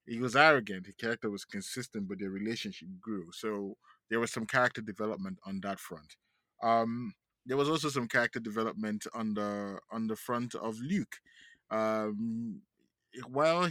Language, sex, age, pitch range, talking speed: English, male, 20-39, 100-125 Hz, 160 wpm